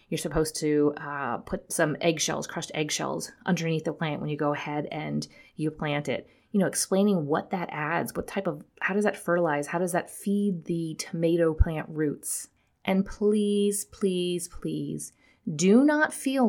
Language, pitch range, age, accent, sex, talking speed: English, 160-220 Hz, 30-49, American, female, 175 wpm